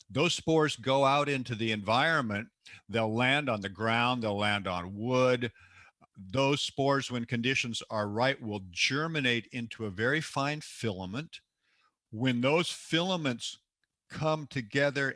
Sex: male